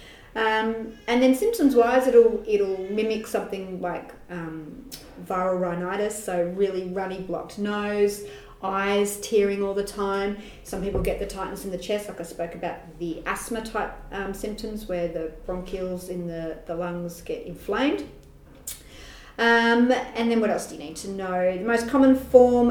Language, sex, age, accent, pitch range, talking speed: English, female, 30-49, Australian, 175-225 Hz, 165 wpm